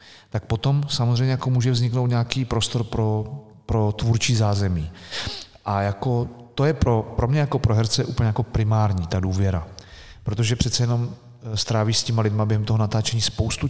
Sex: male